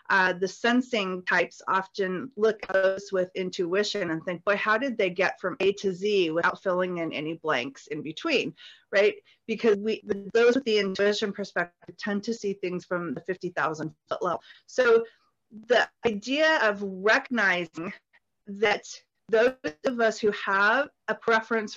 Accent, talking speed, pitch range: American, 160 wpm, 190-245 Hz